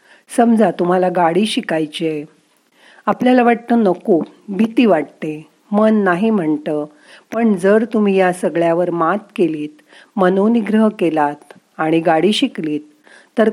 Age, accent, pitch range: 40-59, native, 165-220 Hz